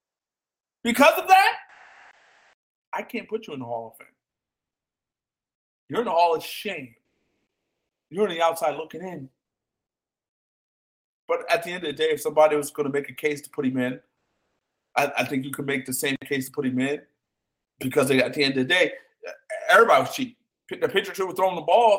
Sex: male